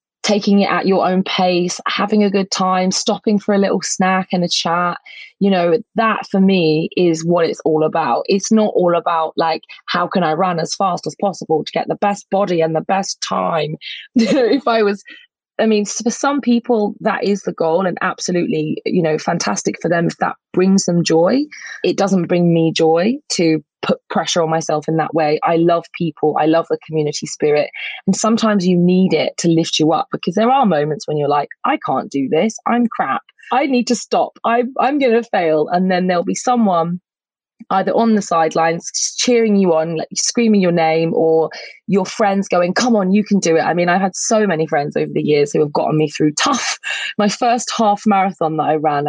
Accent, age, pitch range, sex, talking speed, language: British, 20-39, 160-210 Hz, female, 215 wpm, English